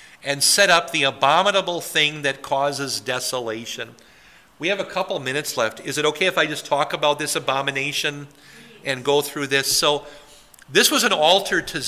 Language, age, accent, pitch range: English, 50-69, American, 145-180 Hz